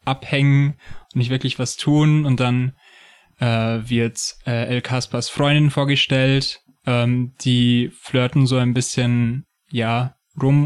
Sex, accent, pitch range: male, German, 120-140 Hz